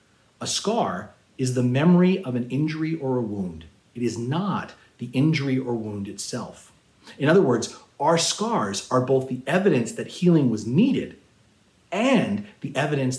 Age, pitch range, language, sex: 40-59, 110-155 Hz, English, male